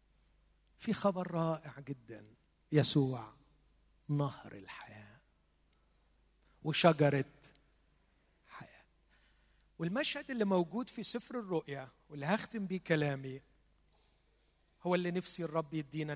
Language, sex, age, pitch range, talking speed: Arabic, male, 50-69, 130-215 Hz, 90 wpm